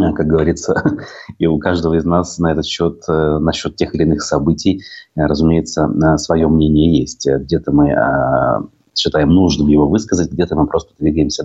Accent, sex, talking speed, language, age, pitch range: native, male, 155 wpm, Russian, 30-49, 80-100 Hz